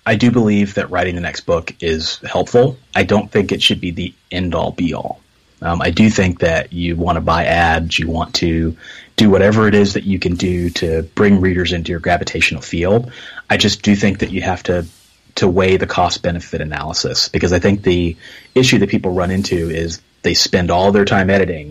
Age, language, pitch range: 30-49, English, 85-100 Hz